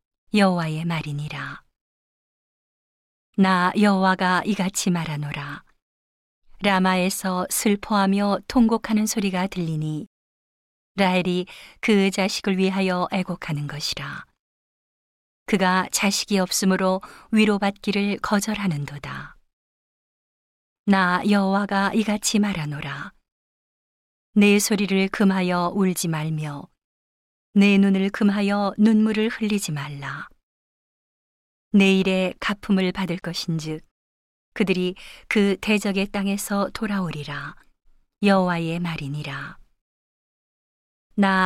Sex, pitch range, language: female, 170-205 Hz, Korean